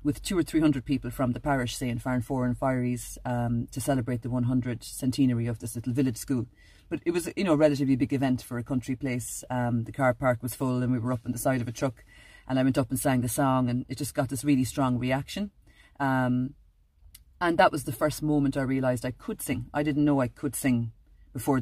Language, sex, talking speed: English, female, 255 wpm